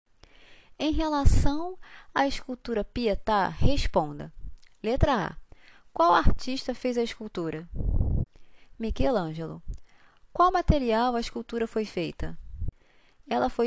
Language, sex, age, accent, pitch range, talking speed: Portuguese, female, 20-39, Brazilian, 175-255 Hz, 95 wpm